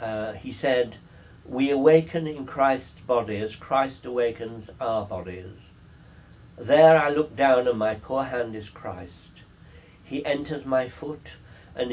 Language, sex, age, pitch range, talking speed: English, male, 60-79, 95-140 Hz, 140 wpm